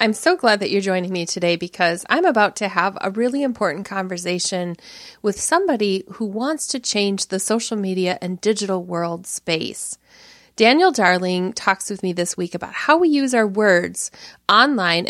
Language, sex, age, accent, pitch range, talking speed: English, female, 30-49, American, 185-245 Hz, 175 wpm